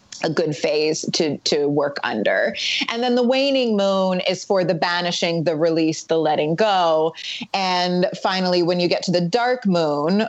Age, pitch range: 30-49, 170-210 Hz